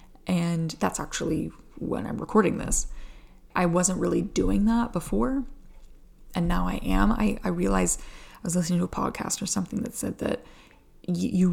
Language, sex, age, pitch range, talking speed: English, female, 20-39, 175-220 Hz, 165 wpm